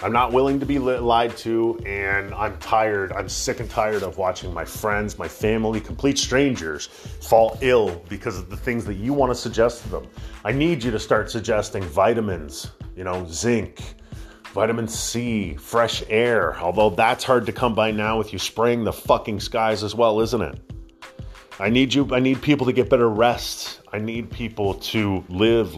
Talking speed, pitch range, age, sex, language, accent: 190 wpm, 105-120 Hz, 30-49, male, English, American